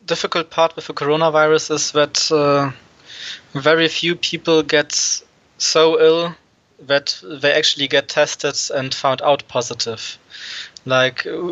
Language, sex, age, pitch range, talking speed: English, male, 20-39, 130-155 Hz, 125 wpm